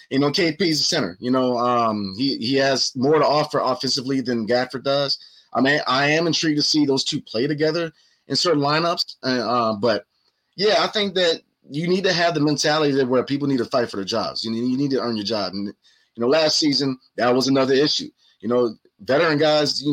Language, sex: English, male